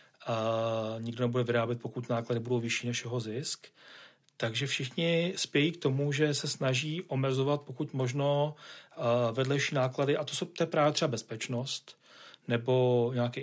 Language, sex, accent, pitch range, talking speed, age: Czech, male, native, 120-145 Hz, 150 wpm, 40-59